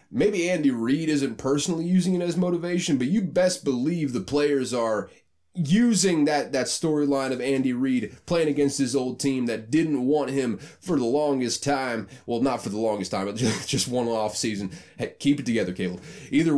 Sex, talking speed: male, 190 wpm